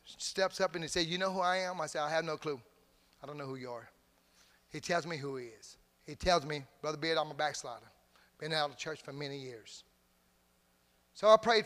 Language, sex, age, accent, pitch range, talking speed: English, male, 30-49, American, 140-175 Hz, 240 wpm